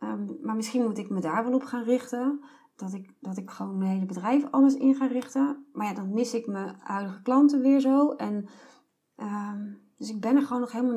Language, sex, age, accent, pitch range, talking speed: Dutch, female, 30-49, Dutch, 195-240 Hz, 230 wpm